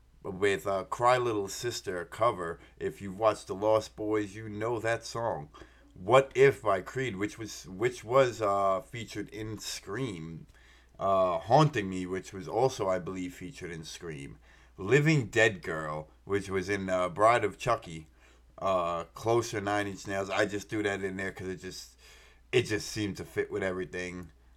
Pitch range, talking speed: 95-115 Hz, 175 wpm